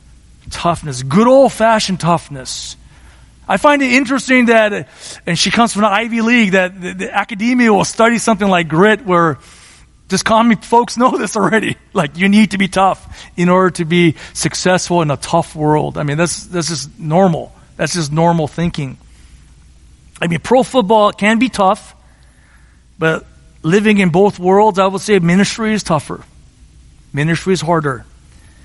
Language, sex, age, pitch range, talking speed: English, male, 40-59, 155-225 Hz, 165 wpm